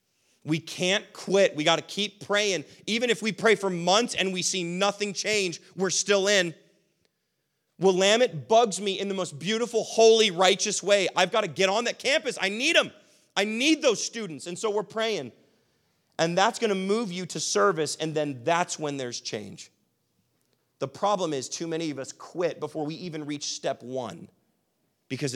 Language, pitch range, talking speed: English, 140-205 Hz, 180 wpm